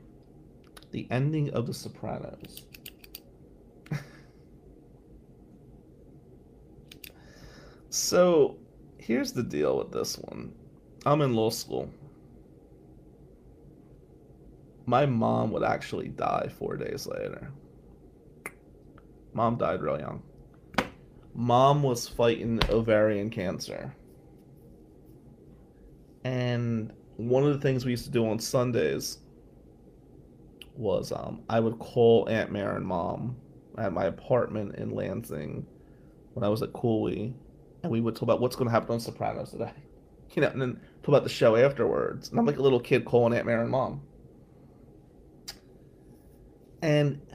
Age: 30-49